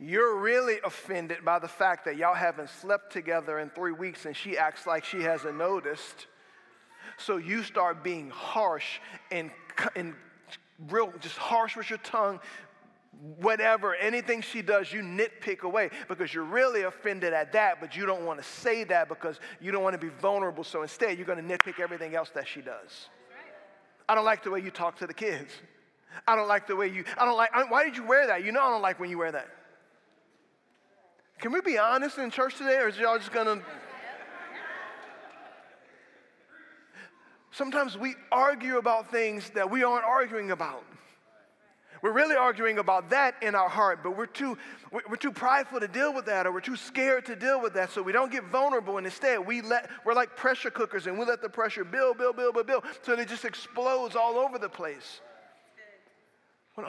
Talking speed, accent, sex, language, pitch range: 195 wpm, American, male, English, 180-250 Hz